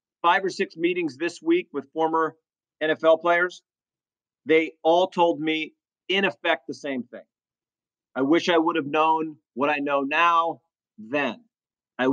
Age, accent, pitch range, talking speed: 40-59, American, 145-180 Hz, 155 wpm